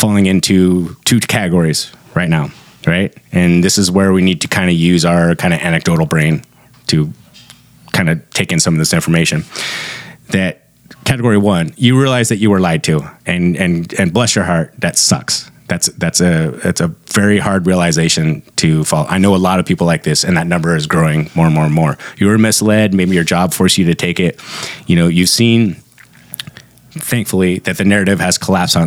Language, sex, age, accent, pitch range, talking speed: English, male, 30-49, American, 85-100 Hz, 205 wpm